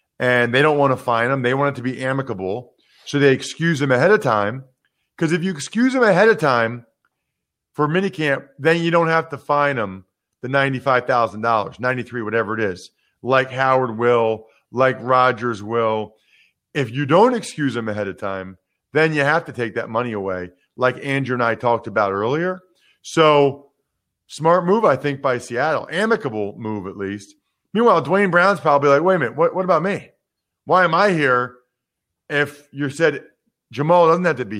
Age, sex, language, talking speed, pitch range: 40-59, male, English, 185 wpm, 120-160 Hz